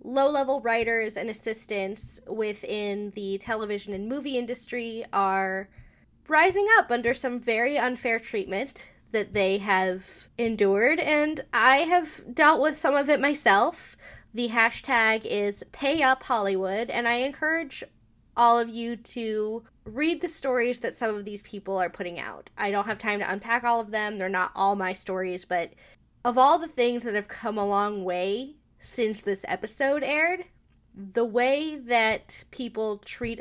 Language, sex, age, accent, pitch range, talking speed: English, female, 20-39, American, 200-250 Hz, 155 wpm